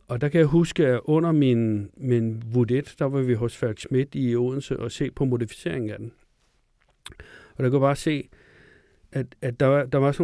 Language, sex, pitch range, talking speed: Danish, male, 120-145 Hz, 210 wpm